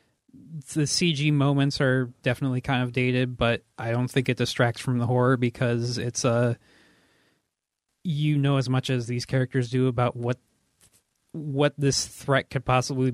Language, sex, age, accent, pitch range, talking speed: English, male, 30-49, American, 115-135 Hz, 170 wpm